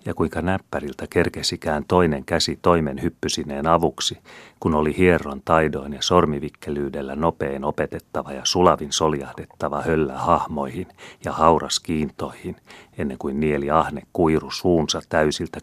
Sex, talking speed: male, 125 wpm